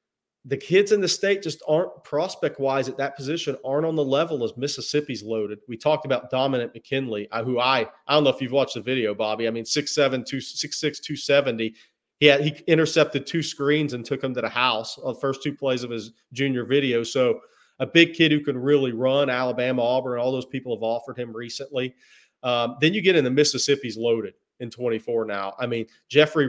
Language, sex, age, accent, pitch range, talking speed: English, male, 40-59, American, 120-145 Hz, 220 wpm